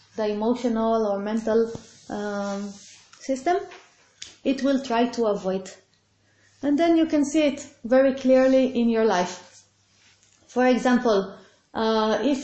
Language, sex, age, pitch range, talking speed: English, female, 30-49, 215-275 Hz, 125 wpm